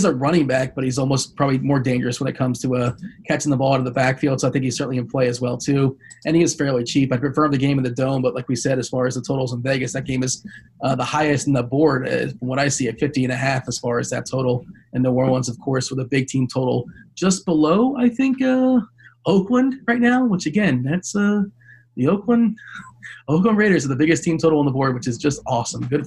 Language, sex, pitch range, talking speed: English, male, 130-165 Hz, 270 wpm